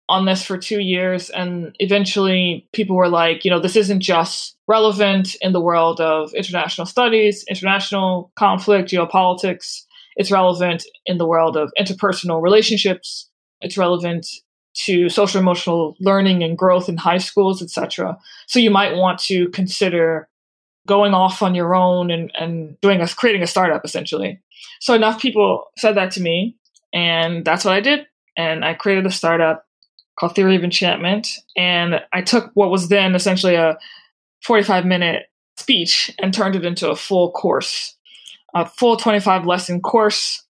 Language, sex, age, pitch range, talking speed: English, female, 20-39, 175-205 Hz, 155 wpm